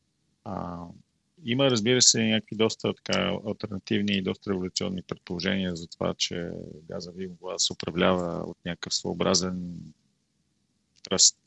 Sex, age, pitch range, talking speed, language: male, 40-59, 90-105 Hz, 120 wpm, Bulgarian